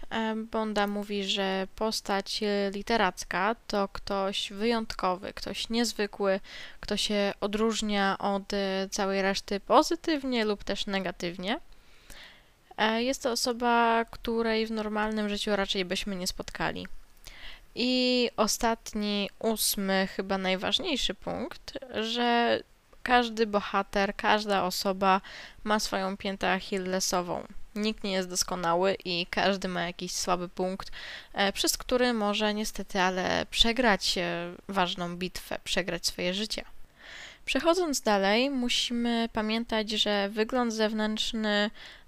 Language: Polish